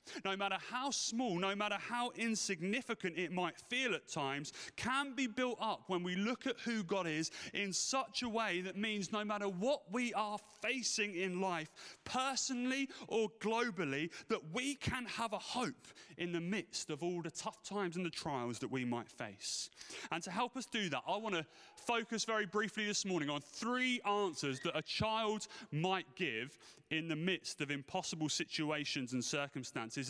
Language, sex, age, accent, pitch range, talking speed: English, male, 30-49, British, 155-220 Hz, 185 wpm